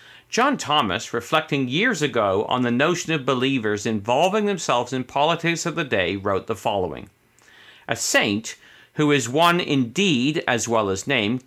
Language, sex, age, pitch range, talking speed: English, male, 50-69, 120-170 Hz, 155 wpm